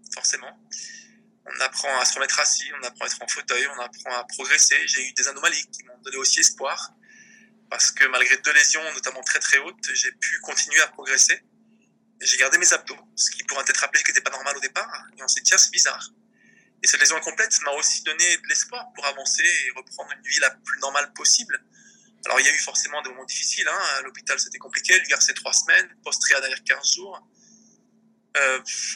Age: 20-39